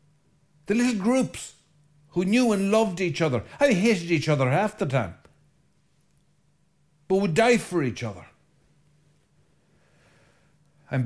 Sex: male